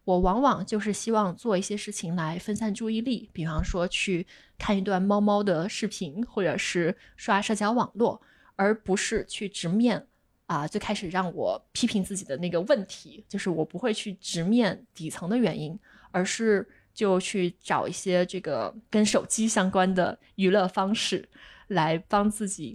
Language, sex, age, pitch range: Chinese, female, 20-39, 185-225 Hz